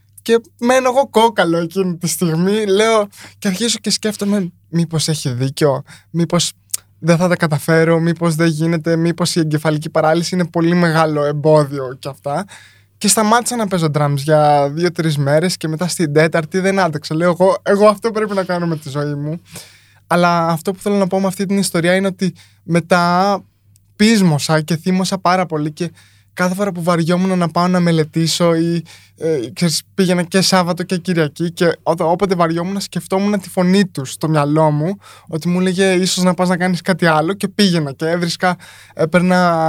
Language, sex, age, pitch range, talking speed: Greek, male, 20-39, 155-195 Hz, 180 wpm